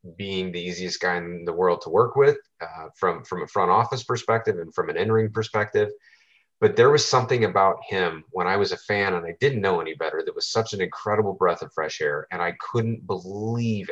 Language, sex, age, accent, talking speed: English, male, 30-49, American, 225 wpm